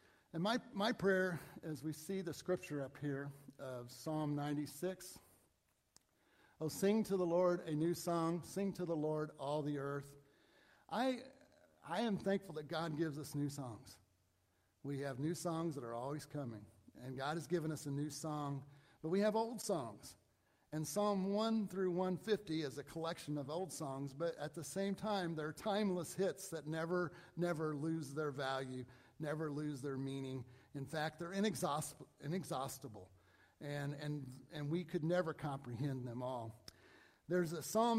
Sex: male